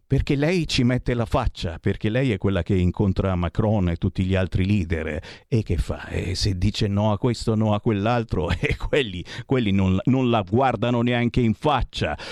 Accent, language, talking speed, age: native, Italian, 195 wpm, 50-69